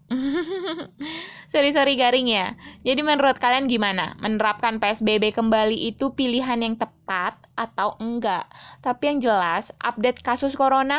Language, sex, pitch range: Indonesian, female, 215-270 Hz